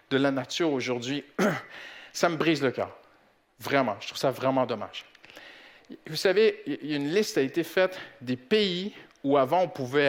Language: French